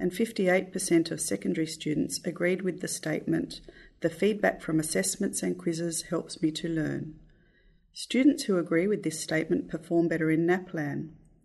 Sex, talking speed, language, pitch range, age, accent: female, 150 wpm, English, 155-180 Hz, 40-59, Australian